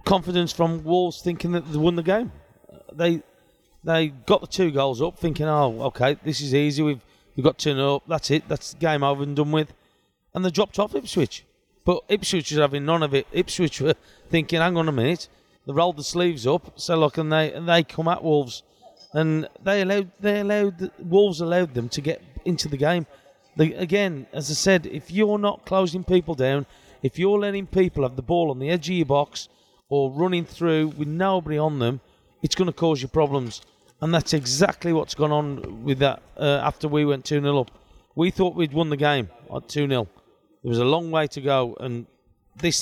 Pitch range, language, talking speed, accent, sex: 140-170 Hz, English, 210 wpm, British, male